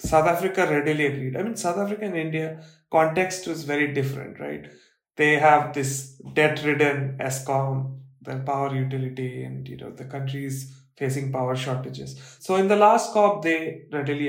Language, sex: English, male